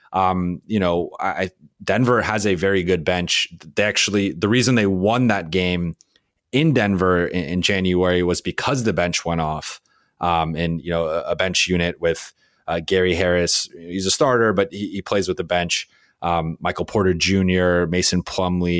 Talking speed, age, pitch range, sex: 180 wpm, 20-39, 90-105 Hz, male